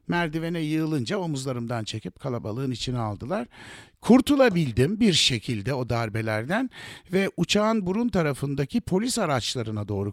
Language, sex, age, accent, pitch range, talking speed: German, male, 60-79, Turkish, 120-180 Hz, 115 wpm